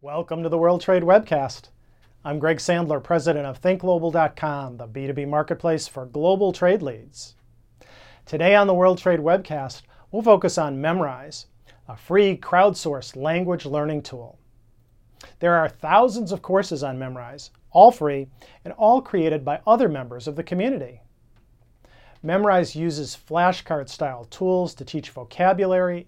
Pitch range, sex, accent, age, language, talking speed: 130-180 Hz, male, American, 40-59, English, 140 wpm